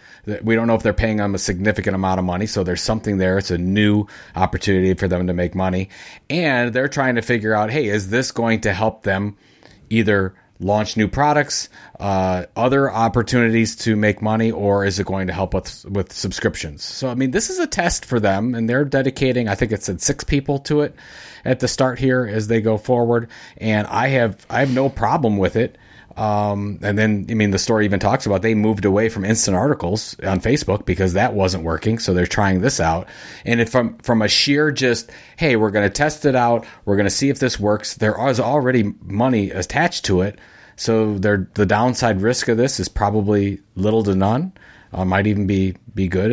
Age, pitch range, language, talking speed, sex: 30-49, 95-120 Hz, English, 210 wpm, male